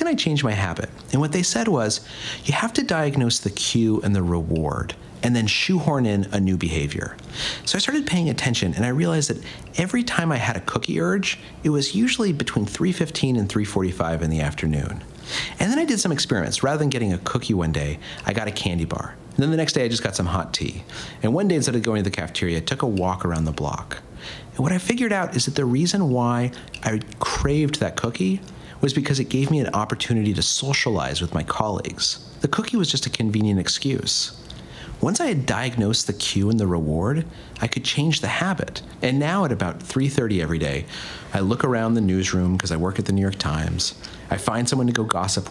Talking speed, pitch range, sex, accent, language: 225 wpm, 95-145 Hz, male, American, English